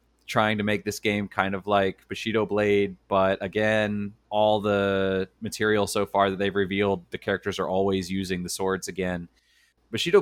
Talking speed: 170 wpm